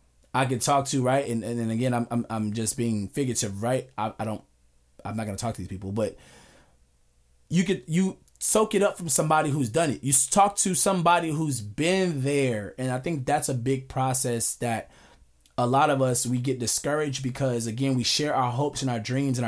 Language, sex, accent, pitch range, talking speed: English, male, American, 115-160 Hz, 220 wpm